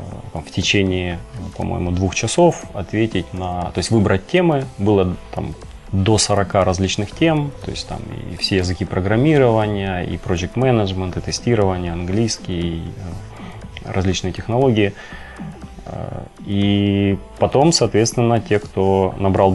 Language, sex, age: Ukrainian, male, 30-49